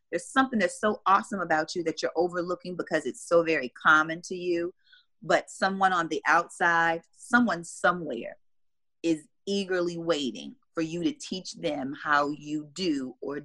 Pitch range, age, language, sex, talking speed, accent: 165-225 Hz, 30-49, English, female, 160 wpm, American